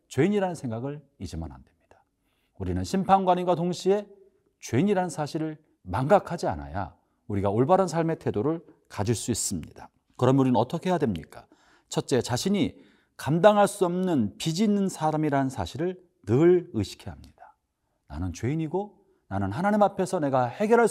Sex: male